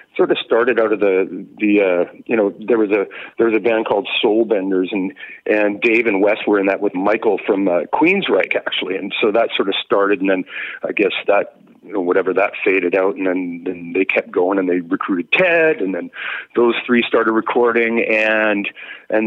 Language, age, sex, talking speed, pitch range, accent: English, 40-59, male, 215 wpm, 100-130 Hz, American